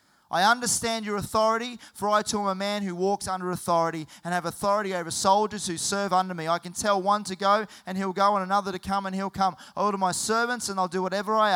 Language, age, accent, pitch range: English, 30-49, Australian, 160-205 Hz